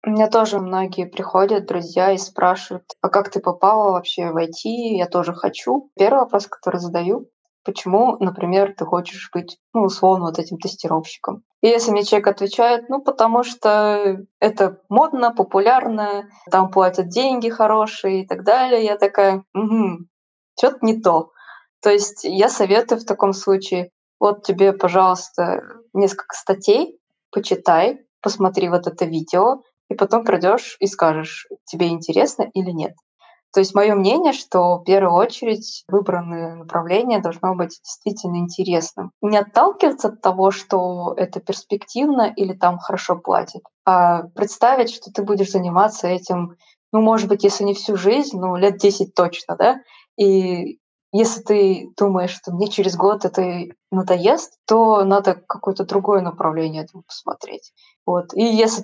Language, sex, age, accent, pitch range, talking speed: Russian, female, 20-39, native, 180-215 Hz, 145 wpm